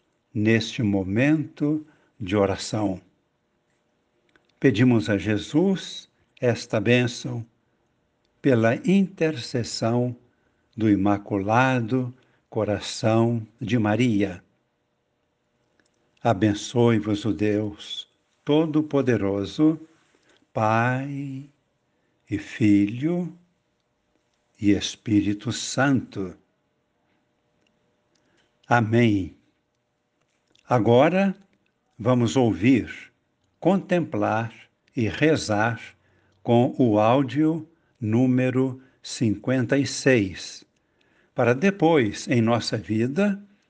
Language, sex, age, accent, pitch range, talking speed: Portuguese, male, 60-79, Brazilian, 105-140 Hz, 60 wpm